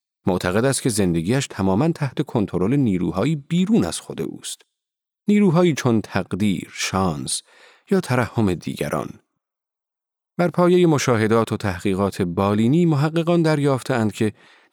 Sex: male